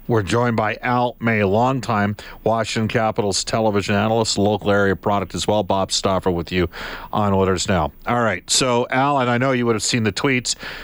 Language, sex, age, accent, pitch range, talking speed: English, male, 40-59, American, 105-125 Hz, 195 wpm